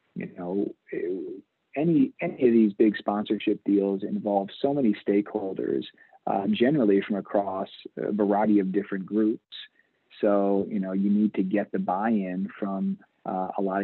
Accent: American